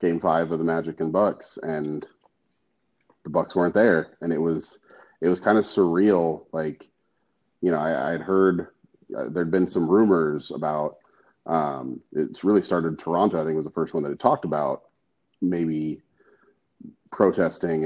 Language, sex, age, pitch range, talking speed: English, male, 30-49, 80-90 Hz, 165 wpm